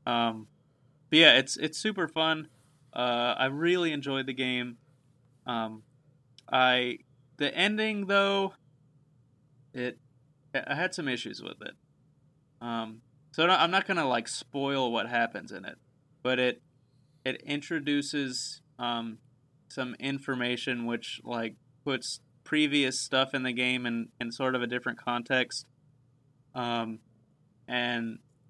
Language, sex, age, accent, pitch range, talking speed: English, male, 20-39, American, 125-145 Hz, 125 wpm